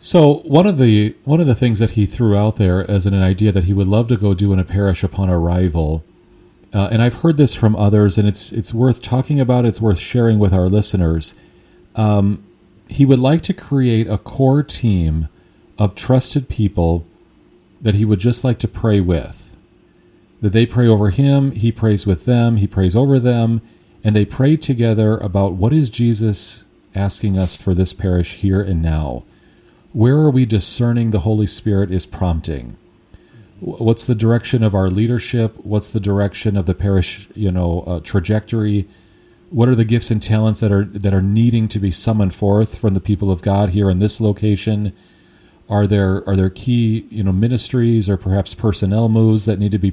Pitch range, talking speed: 100-115 Hz, 195 wpm